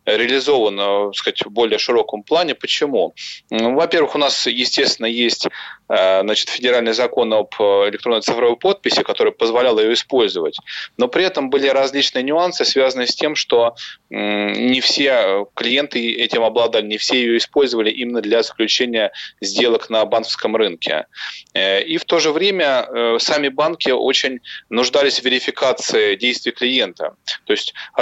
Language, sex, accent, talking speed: Russian, male, native, 135 wpm